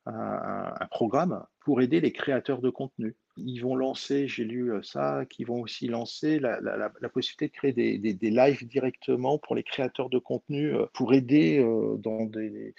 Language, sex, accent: French, male, French